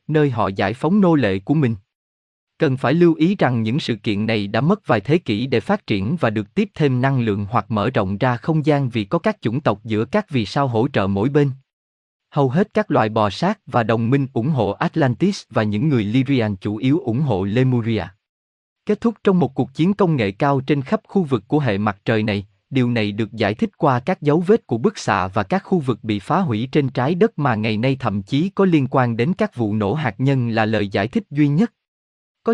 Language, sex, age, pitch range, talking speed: Vietnamese, male, 20-39, 110-160 Hz, 245 wpm